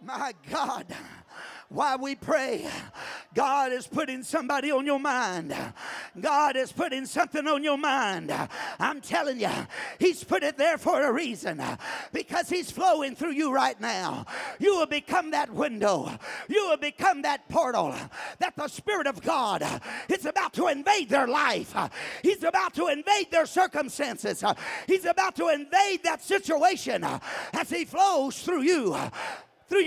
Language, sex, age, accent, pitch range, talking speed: English, male, 50-69, American, 275-355 Hz, 150 wpm